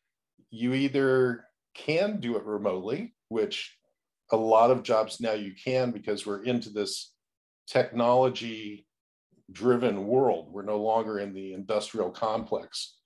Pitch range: 105-130 Hz